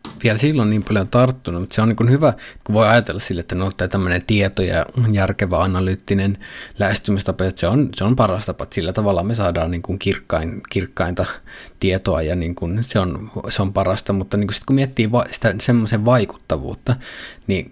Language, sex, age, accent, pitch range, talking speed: Finnish, male, 20-39, native, 95-120 Hz, 195 wpm